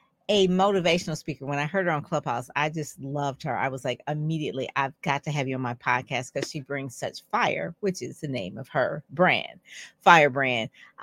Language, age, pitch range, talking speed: English, 40-59, 140-180 Hz, 210 wpm